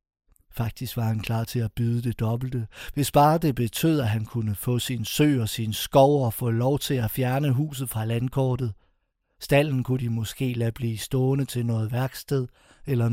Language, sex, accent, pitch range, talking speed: Danish, male, native, 110-135 Hz, 190 wpm